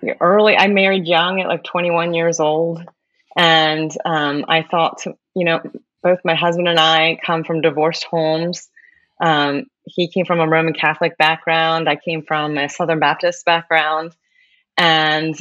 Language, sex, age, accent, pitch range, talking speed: English, female, 30-49, American, 160-200 Hz, 155 wpm